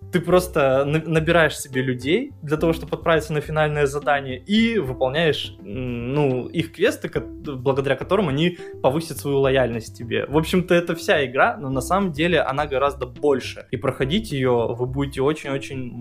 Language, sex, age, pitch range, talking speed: Russian, male, 20-39, 125-155 Hz, 155 wpm